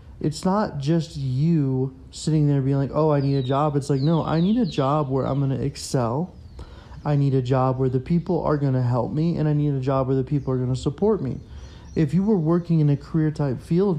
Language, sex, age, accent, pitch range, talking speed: English, male, 30-49, American, 130-155 Hz, 240 wpm